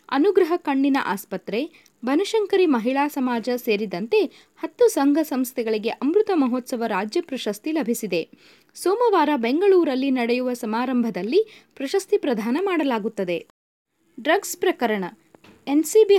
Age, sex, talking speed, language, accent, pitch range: 20-39, female, 95 wpm, Kannada, native, 245-345 Hz